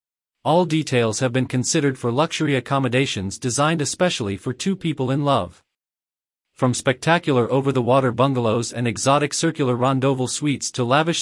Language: English